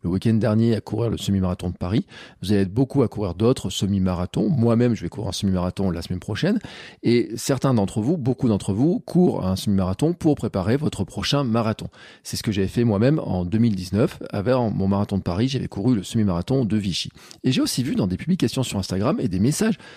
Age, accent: 40-59, French